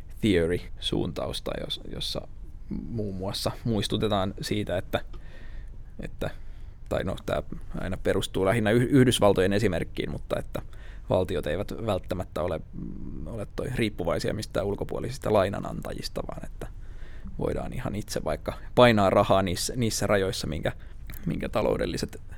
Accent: native